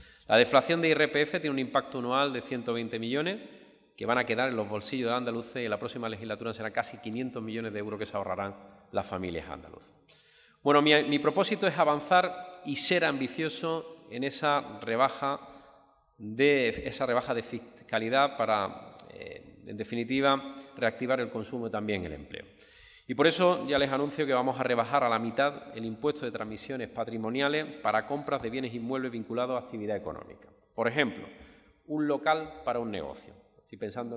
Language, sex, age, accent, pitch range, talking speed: Spanish, male, 30-49, Spanish, 115-150 Hz, 175 wpm